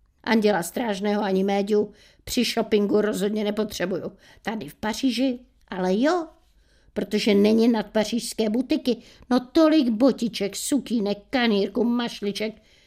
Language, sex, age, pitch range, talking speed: Czech, female, 50-69, 185-235 Hz, 105 wpm